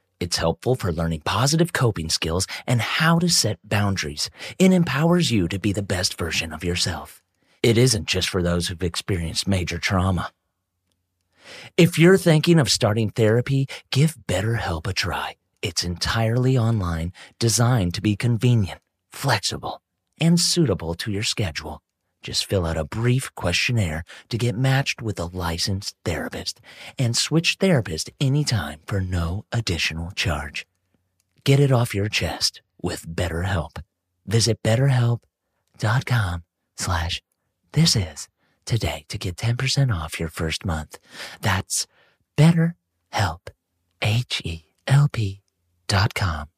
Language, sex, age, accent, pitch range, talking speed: English, male, 30-49, American, 85-120 Hz, 125 wpm